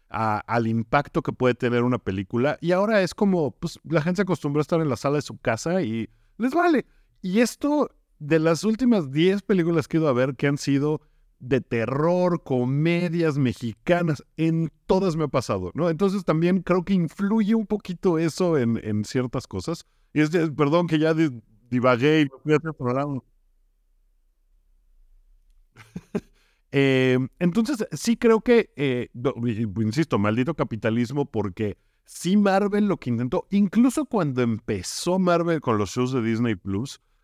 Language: Spanish